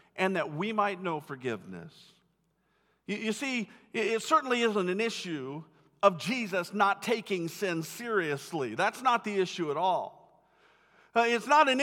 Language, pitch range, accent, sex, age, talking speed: English, 160-220 Hz, American, male, 50-69, 155 wpm